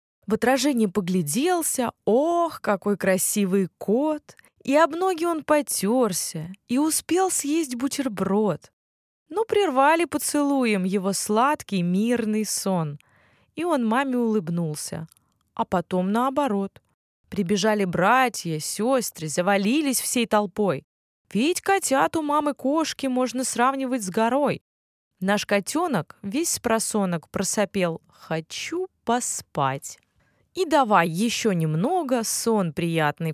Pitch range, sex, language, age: 190-285 Hz, female, Russian, 20-39